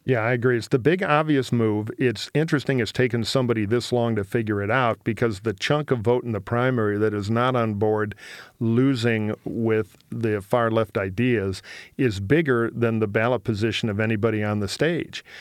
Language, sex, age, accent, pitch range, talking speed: English, male, 50-69, American, 110-130 Hz, 190 wpm